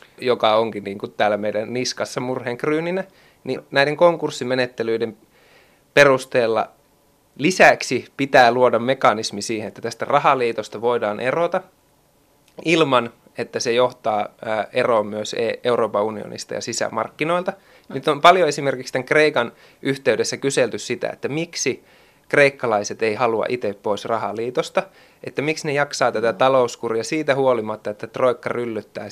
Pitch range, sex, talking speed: 115-155 Hz, male, 120 wpm